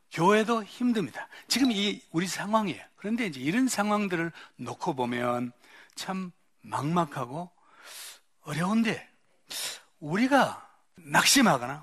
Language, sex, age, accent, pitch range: Korean, male, 60-79, native, 170-250 Hz